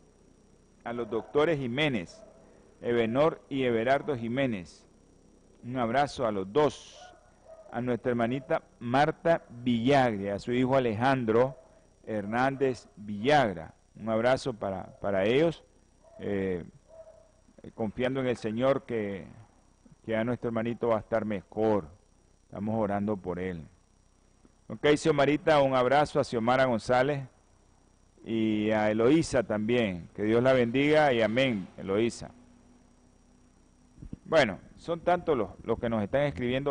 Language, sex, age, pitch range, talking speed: Spanish, male, 50-69, 105-135 Hz, 125 wpm